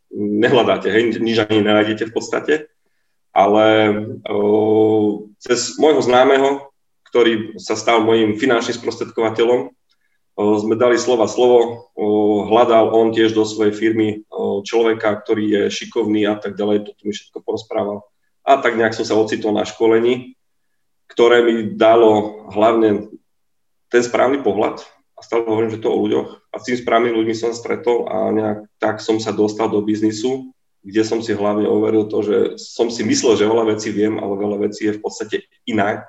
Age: 30-49